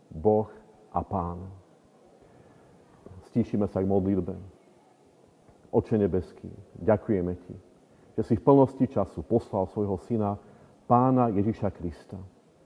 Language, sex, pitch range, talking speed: Slovak, male, 100-125 Hz, 105 wpm